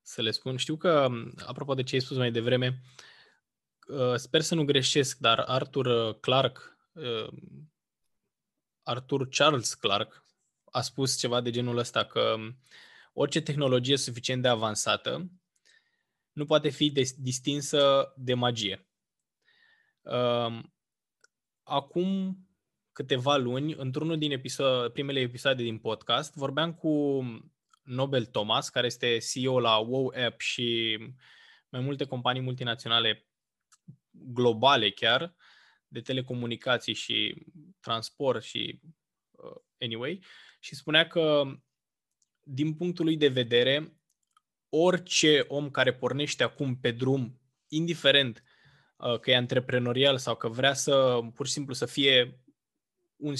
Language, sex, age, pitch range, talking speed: Romanian, male, 20-39, 125-150 Hz, 115 wpm